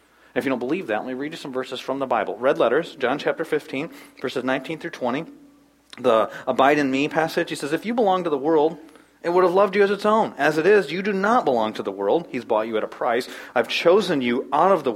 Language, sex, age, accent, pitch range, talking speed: English, male, 40-59, American, 120-180 Hz, 265 wpm